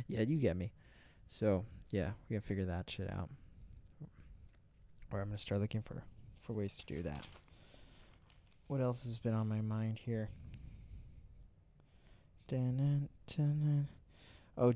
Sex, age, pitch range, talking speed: male, 20-39, 100-115 Hz, 140 wpm